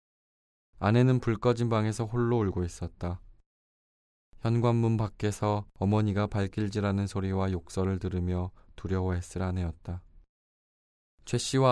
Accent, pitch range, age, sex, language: native, 90-110 Hz, 20-39, male, Korean